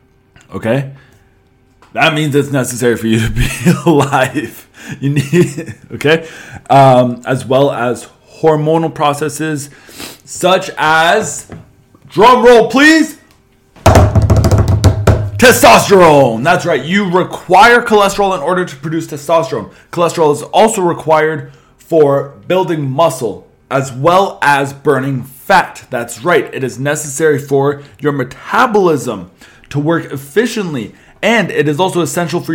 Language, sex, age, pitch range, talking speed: English, male, 20-39, 125-175 Hz, 120 wpm